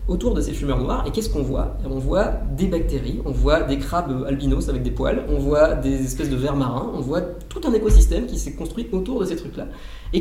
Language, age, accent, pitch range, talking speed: French, 20-39, French, 125-160 Hz, 240 wpm